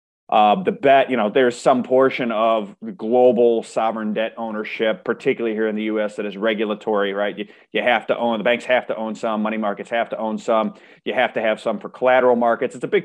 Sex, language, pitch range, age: male, English, 105-120 Hz, 30-49